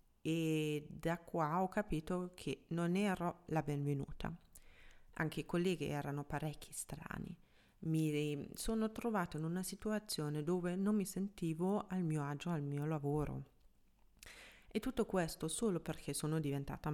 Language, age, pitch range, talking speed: Italian, 30-49, 145-180 Hz, 140 wpm